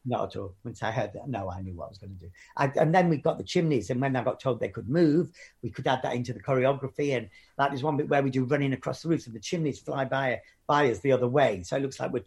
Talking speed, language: 320 wpm, English